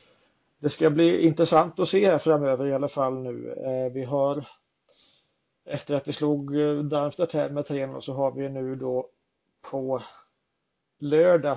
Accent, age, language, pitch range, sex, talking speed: native, 30-49, Swedish, 135-165 Hz, male, 150 wpm